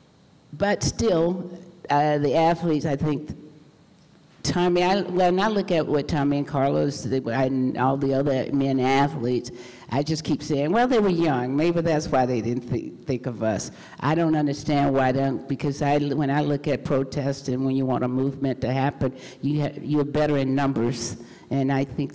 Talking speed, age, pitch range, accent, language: 190 wpm, 50-69, 135-155 Hz, American, English